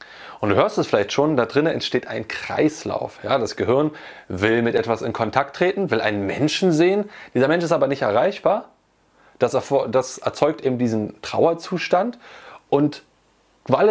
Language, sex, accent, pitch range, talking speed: German, male, German, 115-165 Hz, 155 wpm